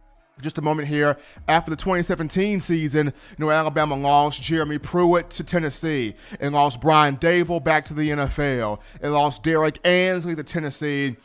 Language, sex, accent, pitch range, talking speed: English, male, American, 150-190 Hz, 155 wpm